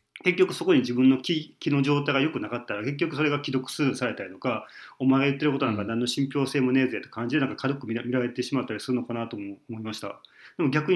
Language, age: Japanese, 40-59